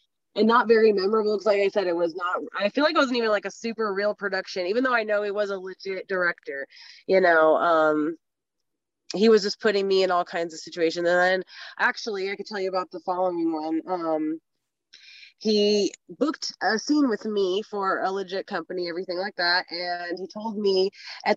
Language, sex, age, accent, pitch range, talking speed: English, female, 20-39, American, 190-235 Hz, 210 wpm